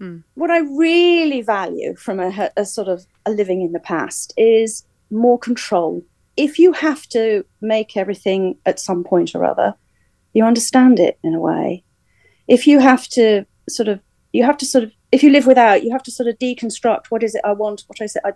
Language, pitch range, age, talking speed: English, 210-280 Hz, 40-59, 210 wpm